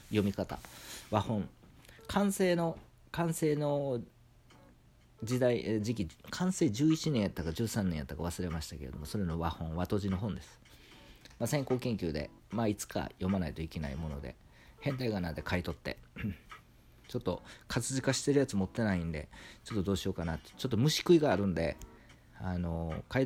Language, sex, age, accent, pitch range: Japanese, male, 40-59, native, 85-120 Hz